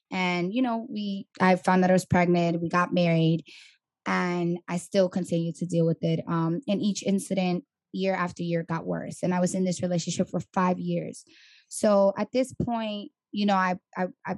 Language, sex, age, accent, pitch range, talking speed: English, female, 10-29, American, 175-195 Hz, 195 wpm